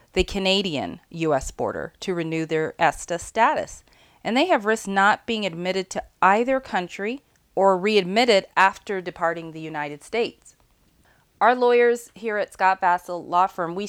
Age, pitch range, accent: 30-49, 165-200 Hz, American